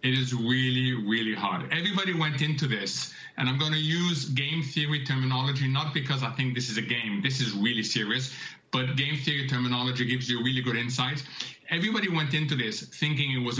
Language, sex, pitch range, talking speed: English, male, 130-160 Hz, 195 wpm